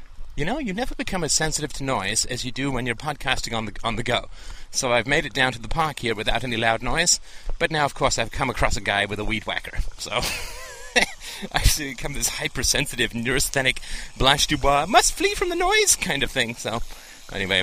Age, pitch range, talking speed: 30-49, 115-155 Hz, 220 wpm